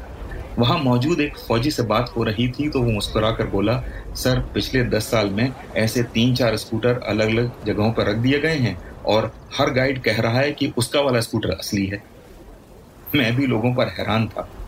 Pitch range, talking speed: 105-125 Hz, 200 wpm